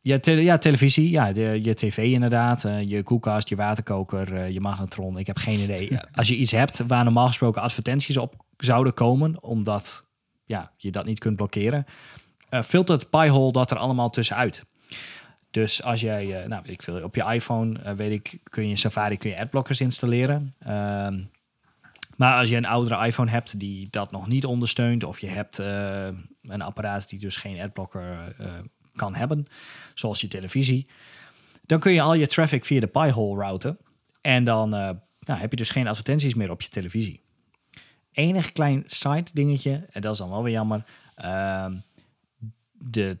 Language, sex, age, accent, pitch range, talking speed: Dutch, male, 20-39, Dutch, 100-130 Hz, 185 wpm